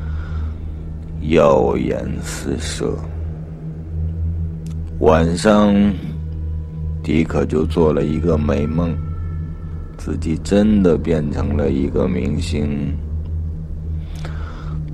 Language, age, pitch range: Chinese, 50-69, 75-85 Hz